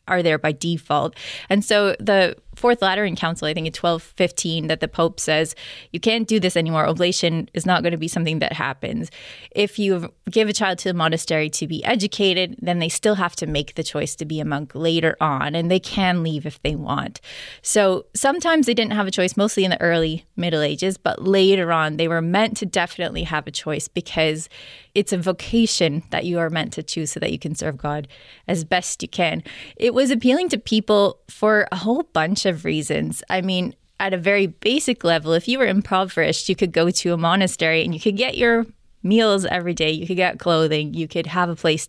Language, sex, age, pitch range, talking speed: English, female, 20-39, 160-200 Hz, 220 wpm